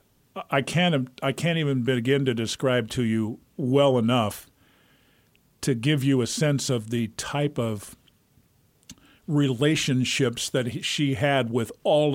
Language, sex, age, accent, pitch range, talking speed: English, male, 50-69, American, 115-135 Hz, 135 wpm